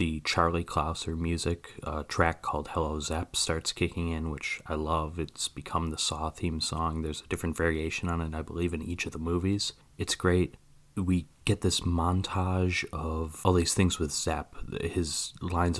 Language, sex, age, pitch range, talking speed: English, male, 30-49, 80-95 Hz, 180 wpm